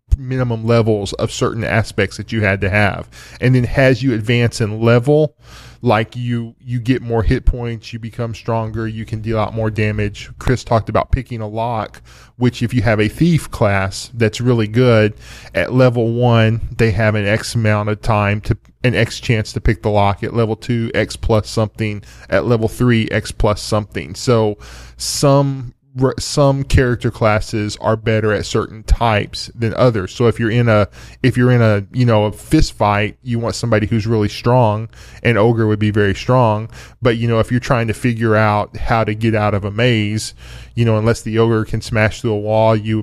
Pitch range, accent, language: 105-120 Hz, American, English